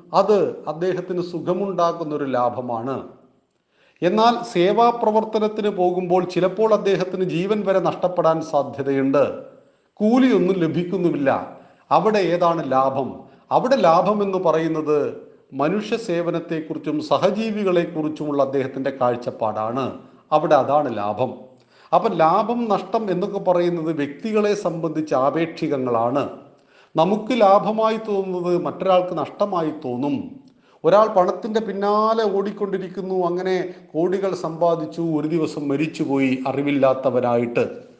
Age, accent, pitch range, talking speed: 40-59, native, 150-200 Hz, 85 wpm